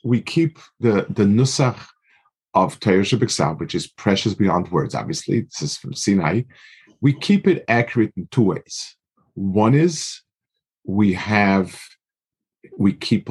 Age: 50-69